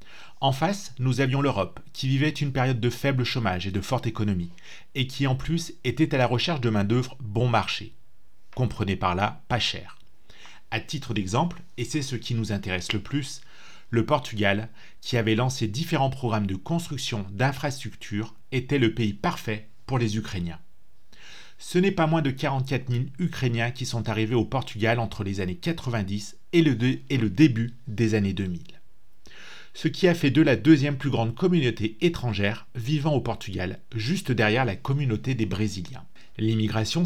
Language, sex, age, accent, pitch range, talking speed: French, male, 30-49, French, 110-140 Hz, 170 wpm